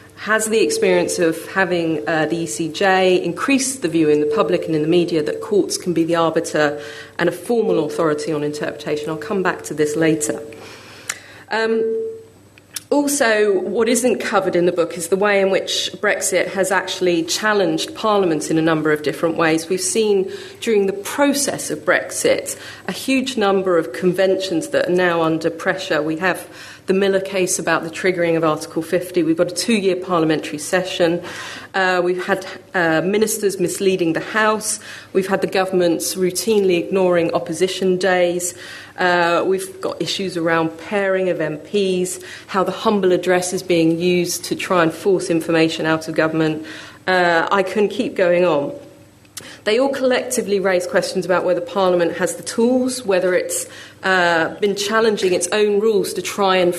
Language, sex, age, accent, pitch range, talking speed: English, female, 40-59, British, 165-200 Hz, 170 wpm